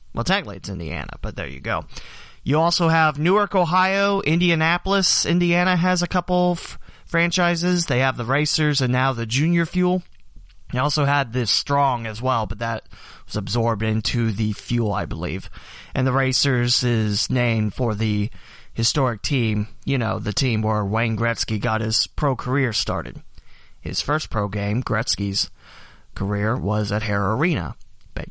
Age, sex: 30-49, male